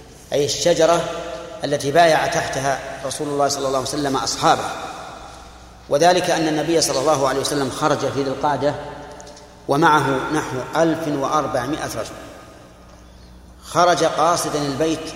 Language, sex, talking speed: Arabic, male, 120 wpm